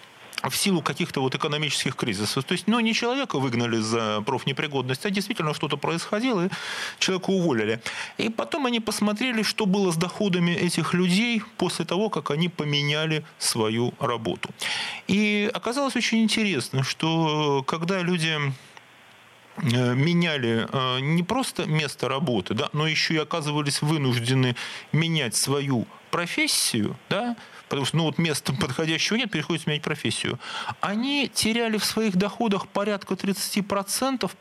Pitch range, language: 145-200 Hz, Russian